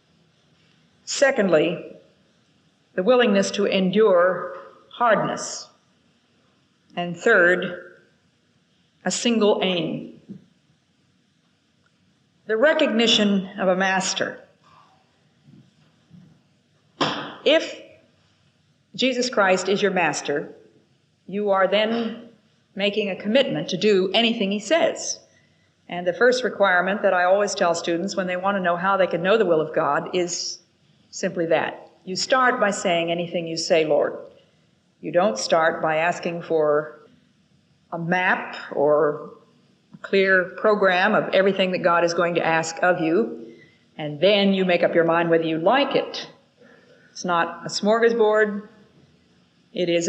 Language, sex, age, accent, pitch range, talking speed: English, female, 50-69, American, 170-210 Hz, 125 wpm